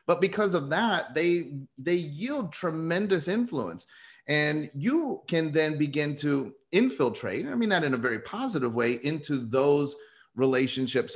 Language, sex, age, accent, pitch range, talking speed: English, male, 30-49, American, 130-180 Hz, 145 wpm